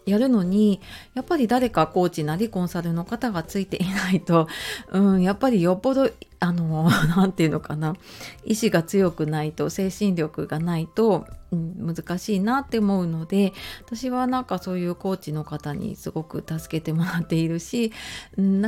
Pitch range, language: 165-230 Hz, Japanese